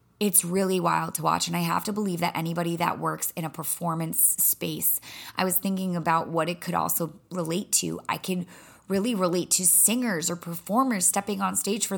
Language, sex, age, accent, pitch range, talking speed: English, female, 20-39, American, 175-215 Hz, 200 wpm